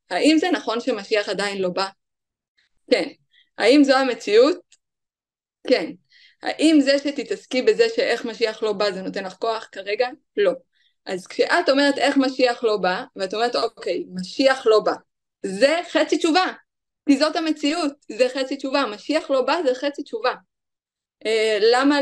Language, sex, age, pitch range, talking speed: Hebrew, female, 20-39, 225-305 Hz, 155 wpm